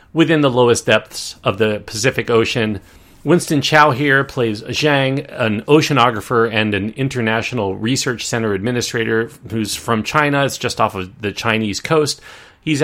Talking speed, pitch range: 150 wpm, 100-135 Hz